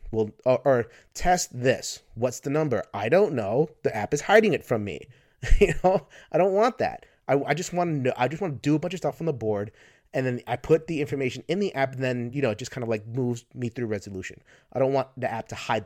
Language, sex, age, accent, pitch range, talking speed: English, male, 30-49, American, 110-140 Hz, 270 wpm